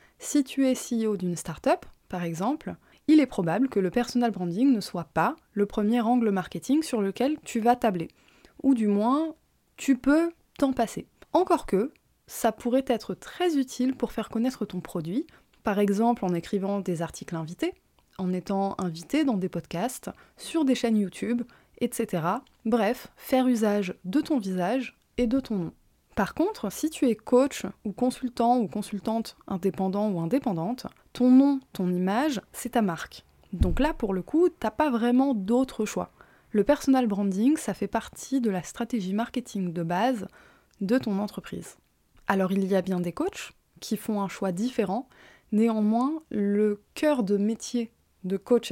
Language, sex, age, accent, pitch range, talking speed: French, female, 20-39, French, 195-255 Hz, 170 wpm